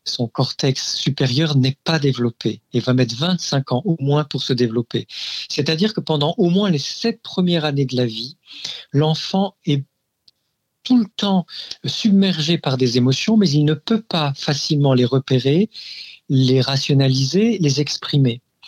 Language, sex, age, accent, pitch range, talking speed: French, male, 50-69, French, 135-180 Hz, 155 wpm